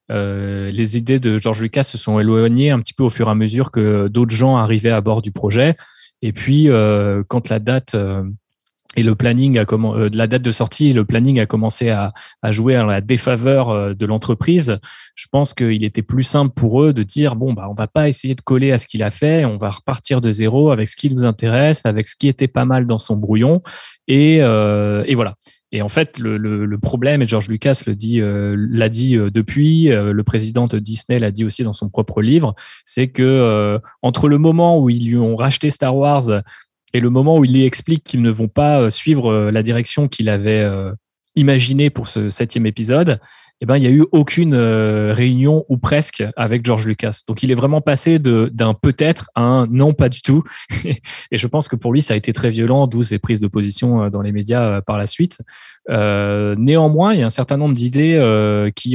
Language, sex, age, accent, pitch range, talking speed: French, male, 20-39, French, 110-135 Hz, 230 wpm